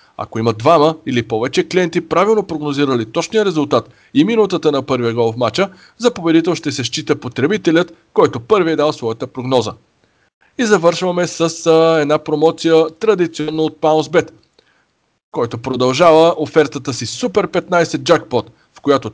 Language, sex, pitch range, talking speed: Bulgarian, male, 130-175 Hz, 145 wpm